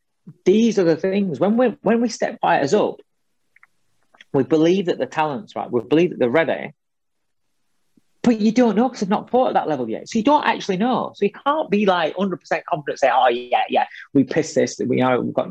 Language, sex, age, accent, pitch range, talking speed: English, male, 30-49, British, 160-230 Hz, 230 wpm